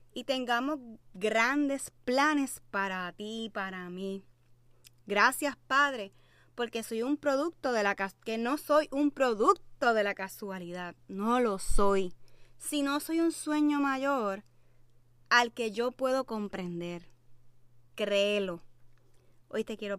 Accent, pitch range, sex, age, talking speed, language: American, 175-250 Hz, female, 20-39, 125 wpm, Spanish